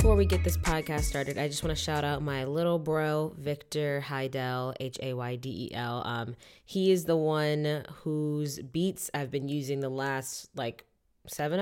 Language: English